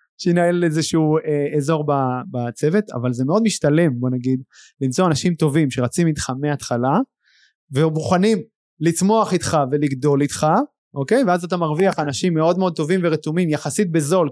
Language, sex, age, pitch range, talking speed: Hebrew, male, 30-49, 155-210 Hz, 140 wpm